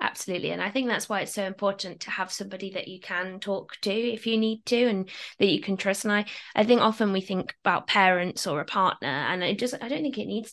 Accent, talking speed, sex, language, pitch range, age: British, 260 wpm, female, English, 180-215 Hz, 20-39